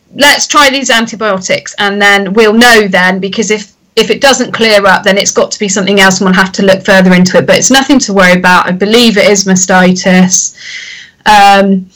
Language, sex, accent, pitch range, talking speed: English, female, British, 195-240 Hz, 215 wpm